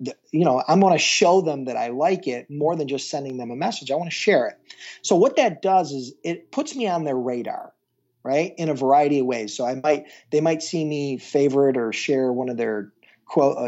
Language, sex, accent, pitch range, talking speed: English, male, American, 130-165 Hz, 235 wpm